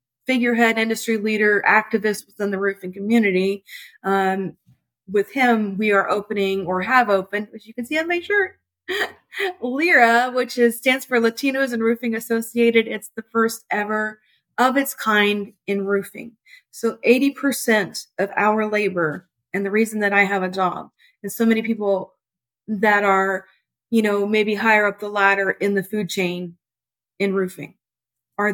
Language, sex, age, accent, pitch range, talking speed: English, female, 30-49, American, 195-230 Hz, 160 wpm